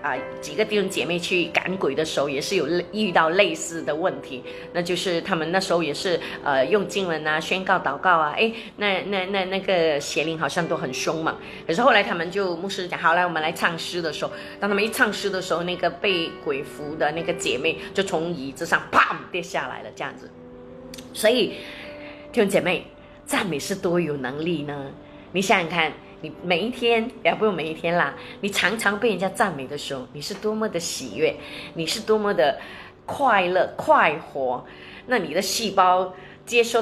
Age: 20-39